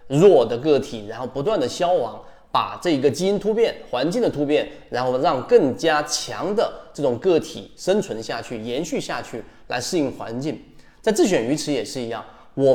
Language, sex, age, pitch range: Chinese, male, 20-39, 120-170 Hz